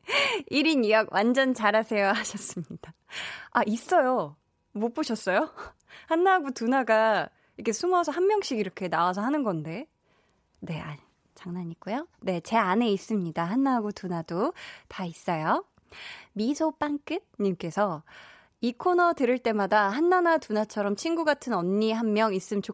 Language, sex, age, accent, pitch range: Korean, female, 20-39, native, 200-280 Hz